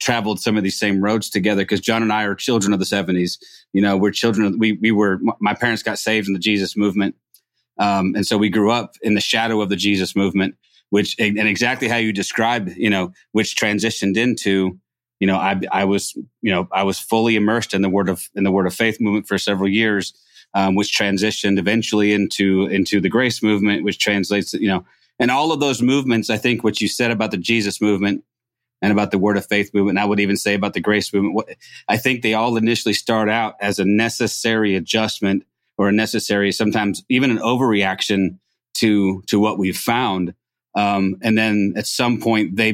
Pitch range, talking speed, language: 100-110 Hz, 220 wpm, English